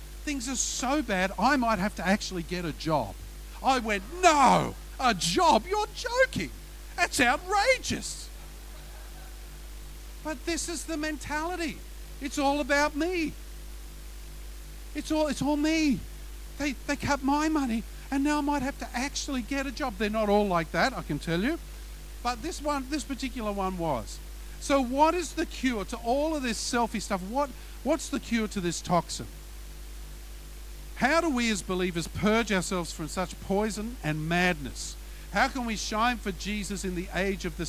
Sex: male